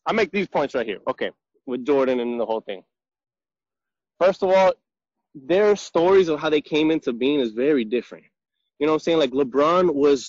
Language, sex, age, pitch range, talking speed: English, male, 20-39, 135-185 Hz, 205 wpm